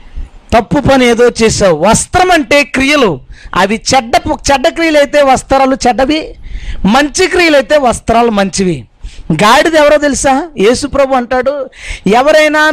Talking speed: 120 wpm